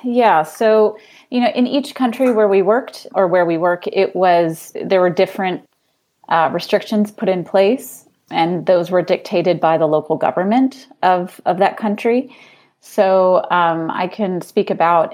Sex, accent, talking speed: female, American, 165 wpm